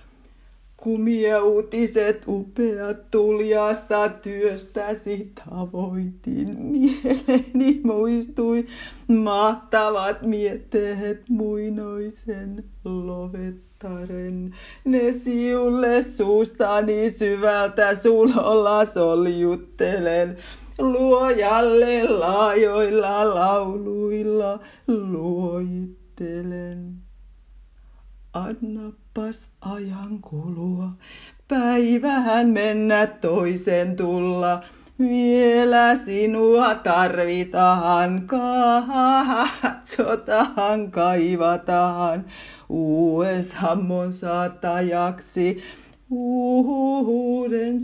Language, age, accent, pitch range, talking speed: Swedish, 30-49, Finnish, 180-235 Hz, 50 wpm